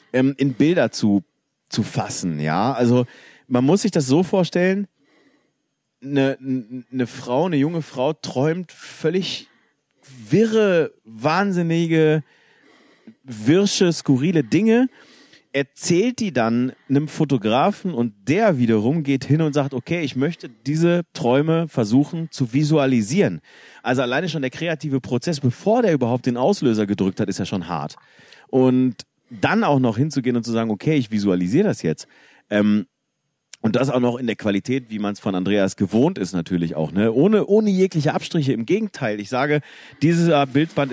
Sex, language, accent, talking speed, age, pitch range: male, German, German, 150 wpm, 40-59, 115-155 Hz